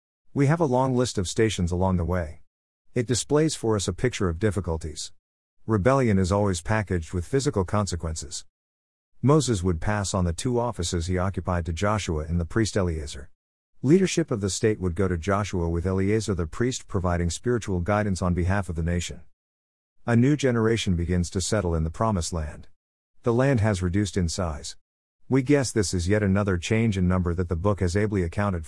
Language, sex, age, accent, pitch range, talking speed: English, male, 50-69, American, 85-115 Hz, 190 wpm